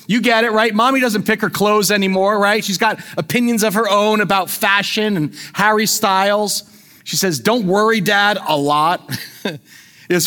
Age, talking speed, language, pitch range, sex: 30-49, 175 wpm, English, 190-240 Hz, male